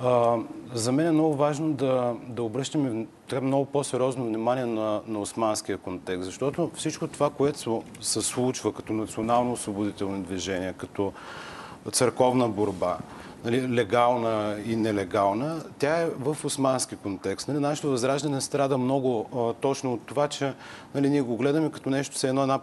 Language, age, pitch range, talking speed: Bulgarian, 40-59, 110-150 Hz, 150 wpm